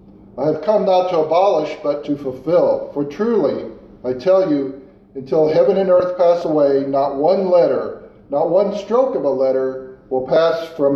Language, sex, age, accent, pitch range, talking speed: Bengali, male, 50-69, American, 135-180 Hz, 175 wpm